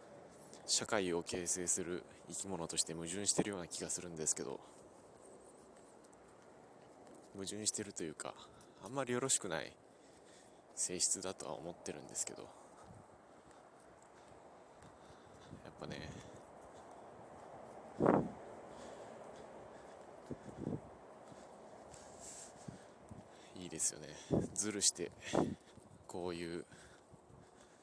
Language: Japanese